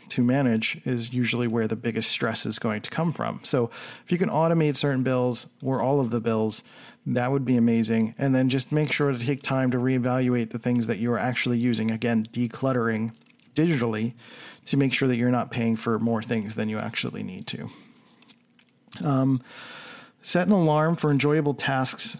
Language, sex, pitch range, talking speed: English, male, 120-145 Hz, 190 wpm